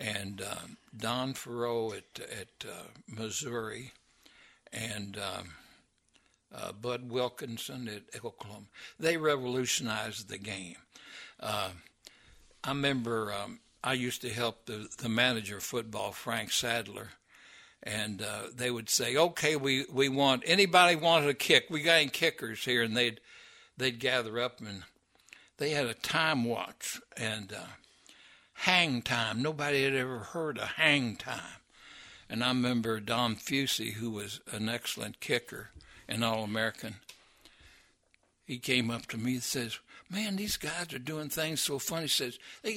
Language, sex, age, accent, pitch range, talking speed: English, male, 60-79, American, 115-150 Hz, 145 wpm